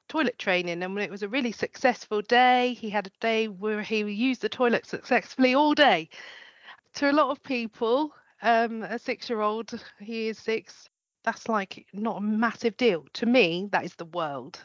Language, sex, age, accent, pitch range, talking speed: English, female, 40-59, British, 185-230 Hz, 185 wpm